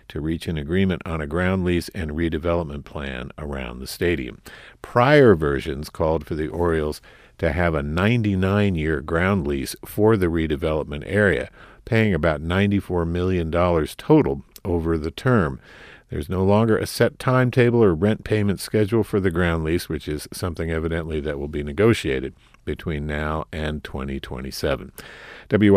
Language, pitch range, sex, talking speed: English, 80-115 Hz, male, 155 wpm